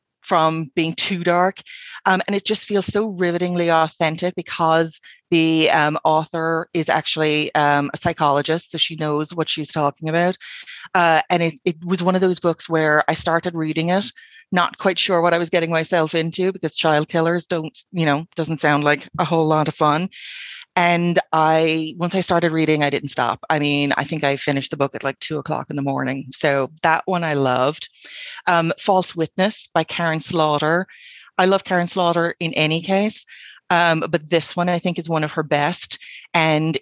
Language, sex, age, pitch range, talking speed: English, female, 30-49, 155-180 Hz, 195 wpm